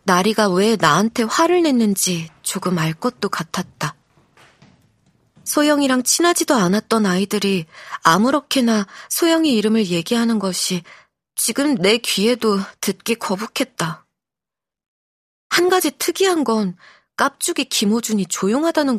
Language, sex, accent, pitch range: Korean, female, native, 190-255 Hz